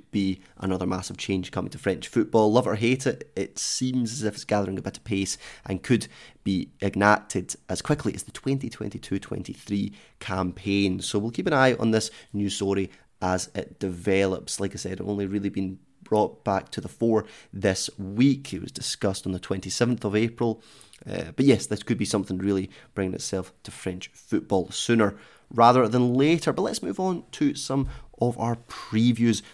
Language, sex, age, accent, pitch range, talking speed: English, male, 30-49, British, 95-120 Hz, 185 wpm